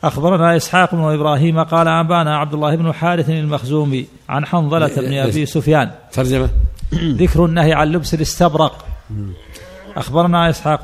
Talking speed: 125 wpm